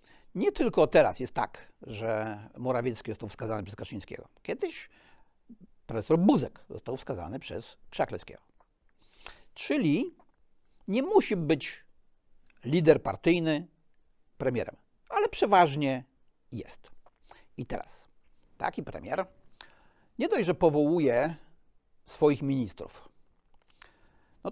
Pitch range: 125-170 Hz